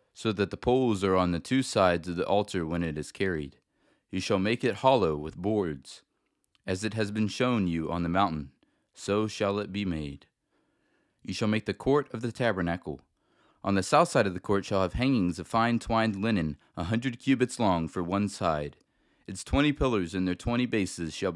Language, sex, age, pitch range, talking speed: English, male, 30-49, 85-110 Hz, 210 wpm